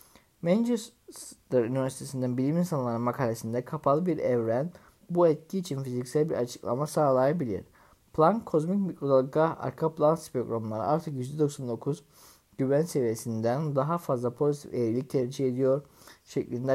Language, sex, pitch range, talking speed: Turkish, male, 120-150 Hz, 115 wpm